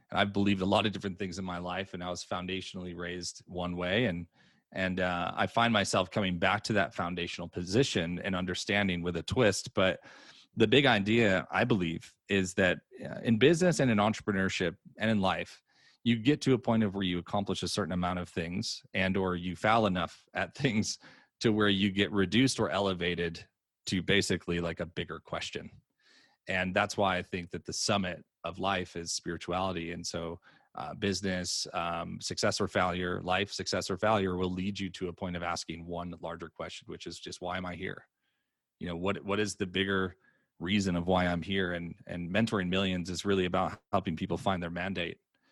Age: 30-49